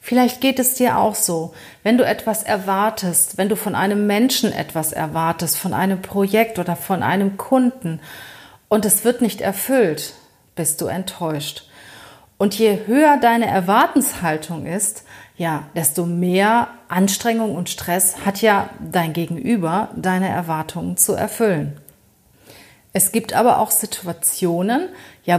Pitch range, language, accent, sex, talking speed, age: 170-220 Hz, German, German, female, 135 wpm, 40-59